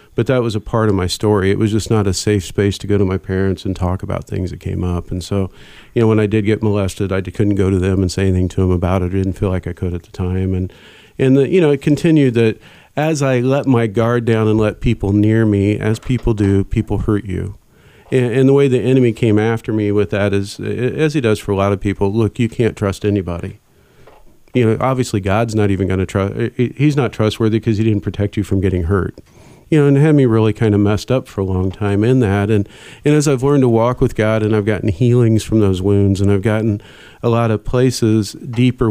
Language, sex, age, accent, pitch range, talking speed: English, male, 40-59, American, 100-125 Hz, 260 wpm